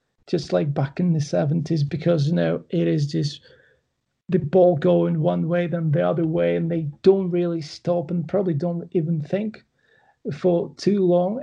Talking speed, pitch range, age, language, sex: 180 wpm, 165-200 Hz, 30-49, English, male